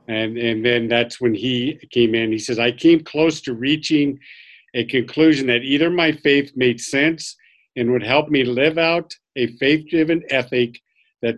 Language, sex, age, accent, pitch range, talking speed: English, male, 50-69, American, 115-140 Hz, 175 wpm